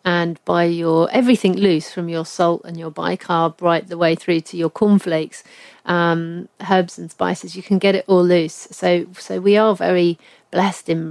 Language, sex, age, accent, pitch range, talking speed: English, female, 40-59, British, 170-190 Hz, 190 wpm